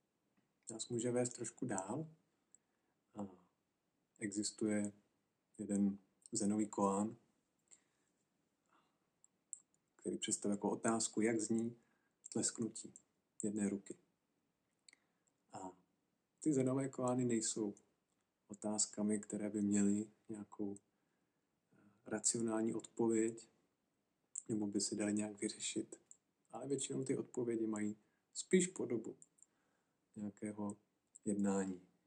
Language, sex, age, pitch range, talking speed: Czech, male, 40-59, 100-110 Hz, 85 wpm